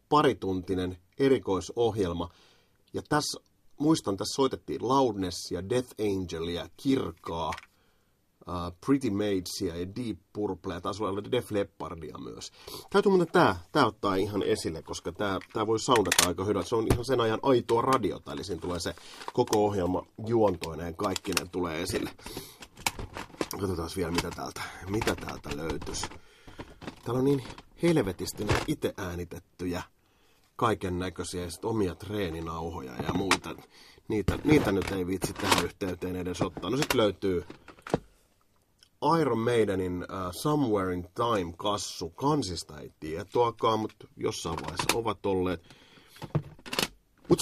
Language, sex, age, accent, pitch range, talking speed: Finnish, male, 30-49, native, 90-120 Hz, 125 wpm